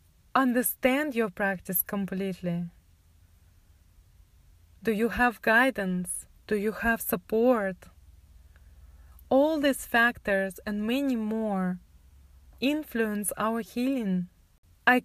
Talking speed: 90 wpm